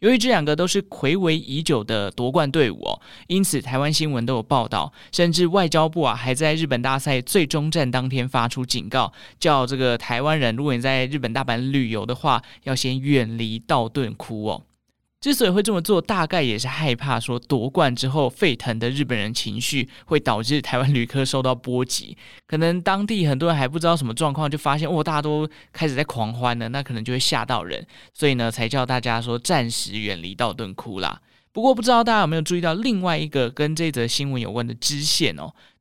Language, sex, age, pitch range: Chinese, male, 20-39, 125-165 Hz